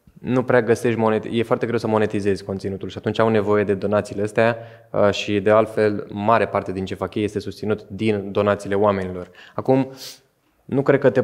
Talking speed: 190 wpm